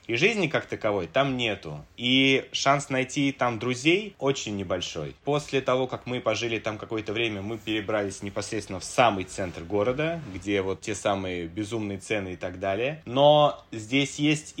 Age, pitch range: 20-39, 100-130 Hz